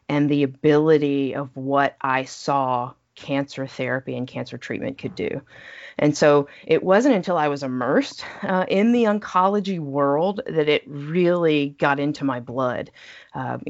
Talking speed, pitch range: 155 wpm, 140-190 Hz